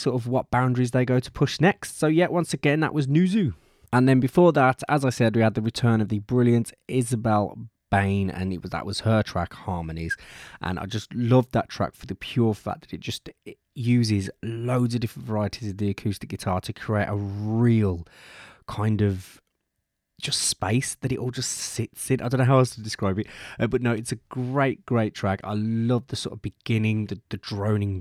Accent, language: British, English